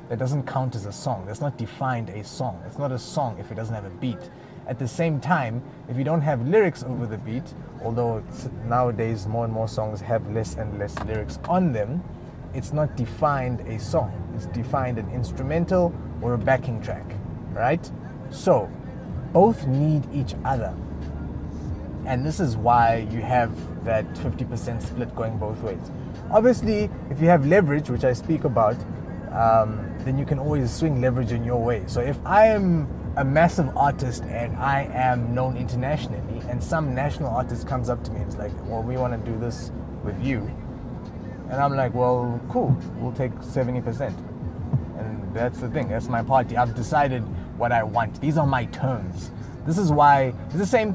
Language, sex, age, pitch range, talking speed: English, male, 30-49, 115-145 Hz, 185 wpm